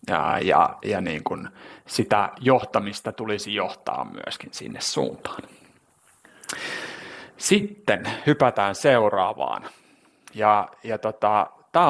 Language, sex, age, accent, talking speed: Finnish, male, 30-49, native, 95 wpm